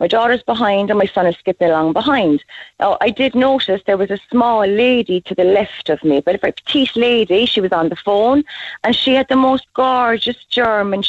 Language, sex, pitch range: English, female, 205-275 Hz